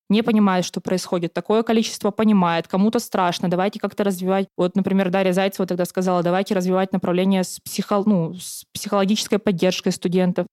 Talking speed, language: 155 wpm, Russian